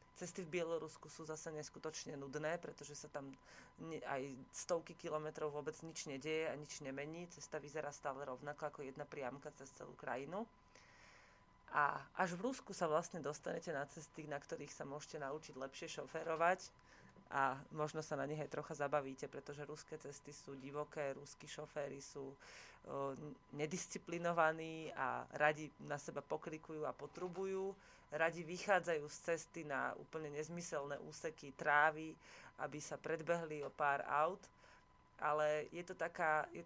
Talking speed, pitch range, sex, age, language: 150 wpm, 145-165 Hz, female, 30-49, Slovak